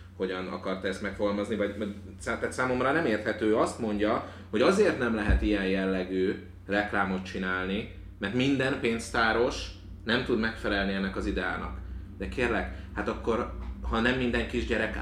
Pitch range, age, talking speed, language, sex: 95-115 Hz, 30-49, 150 wpm, Hungarian, male